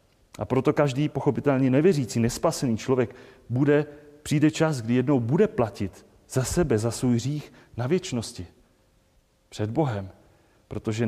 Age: 30-49